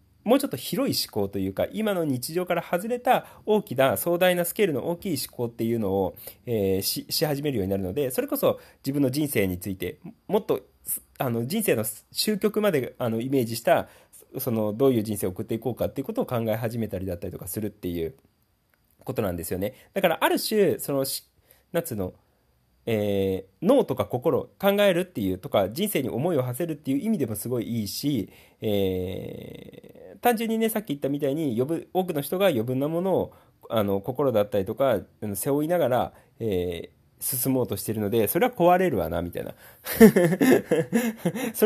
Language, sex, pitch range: Japanese, male, 105-175 Hz